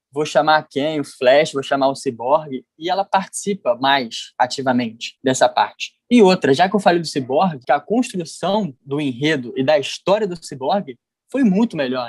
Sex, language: male, Portuguese